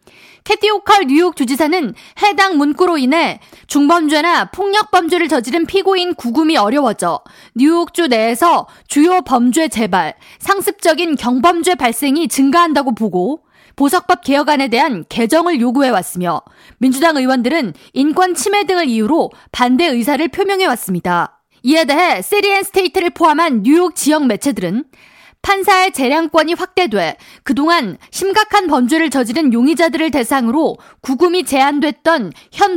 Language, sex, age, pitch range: Korean, female, 20-39, 260-360 Hz